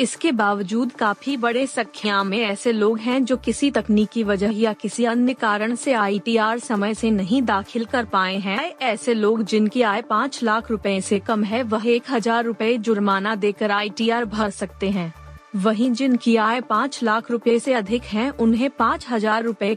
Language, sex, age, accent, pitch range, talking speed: Hindi, female, 30-49, native, 205-245 Hz, 175 wpm